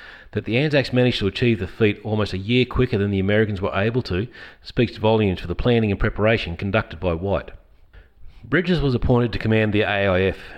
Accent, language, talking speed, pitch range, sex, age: Australian, English, 200 wpm, 95-115 Hz, male, 40-59